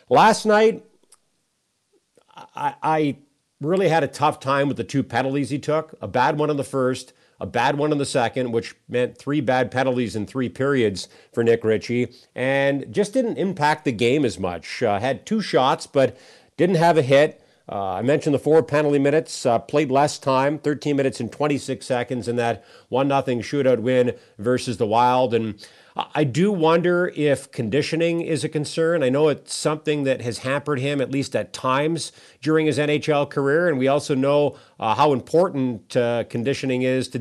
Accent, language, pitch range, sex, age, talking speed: American, English, 125-150 Hz, male, 50-69, 185 wpm